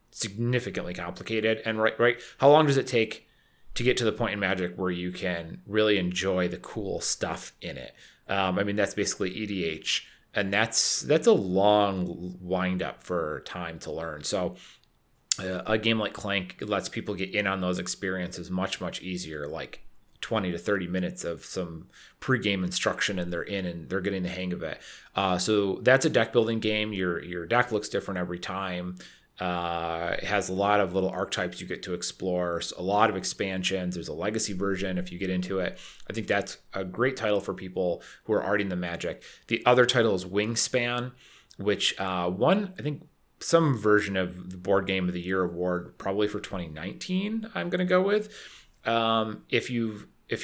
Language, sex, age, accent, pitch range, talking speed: English, male, 30-49, American, 90-115 Hz, 195 wpm